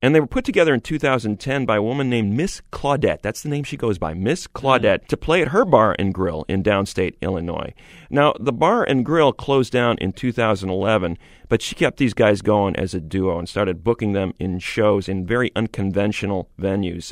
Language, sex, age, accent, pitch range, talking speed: English, male, 40-59, American, 95-120 Hz, 205 wpm